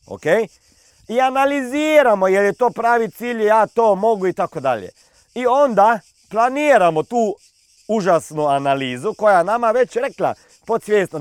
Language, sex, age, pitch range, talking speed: Croatian, male, 40-59, 155-225 Hz, 125 wpm